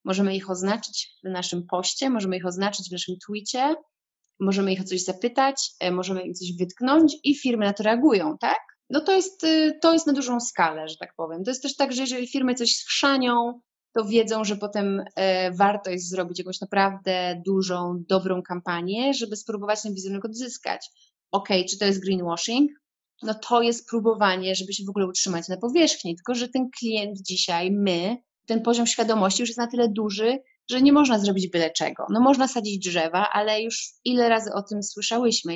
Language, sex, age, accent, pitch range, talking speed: Polish, female, 20-39, native, 190-240 Hz, 190 wpm